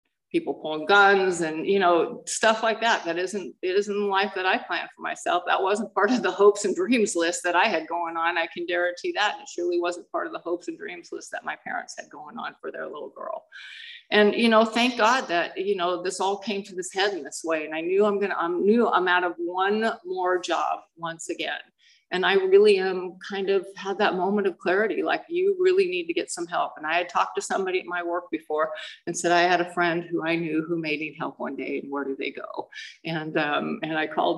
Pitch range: 170-235 Hz